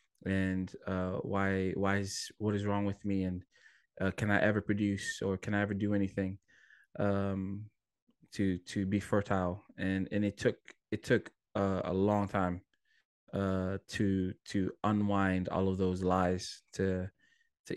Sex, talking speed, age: male, 160 wpm, 20-39